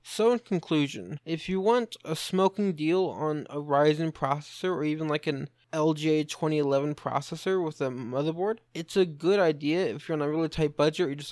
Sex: male